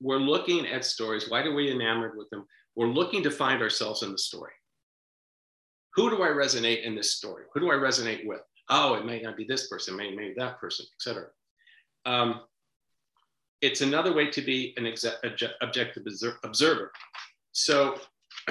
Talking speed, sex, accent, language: 170 wpm, male, American, English